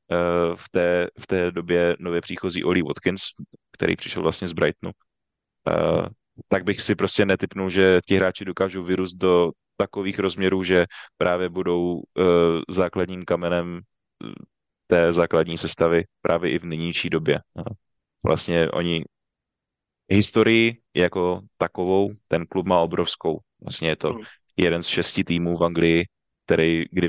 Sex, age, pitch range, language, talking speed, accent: male, 20-39, 85-95 Hz, Czech, 140 wpm, native